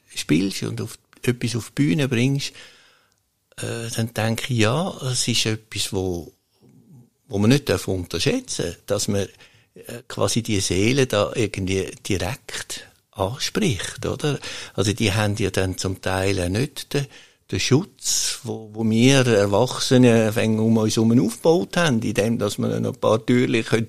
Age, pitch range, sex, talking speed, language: 60-79, 100-125 Hz, male, 155 wpm, German